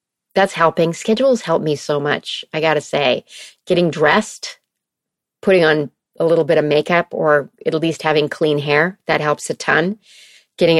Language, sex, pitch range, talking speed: English, female, 155-190 Hz, 170 wpm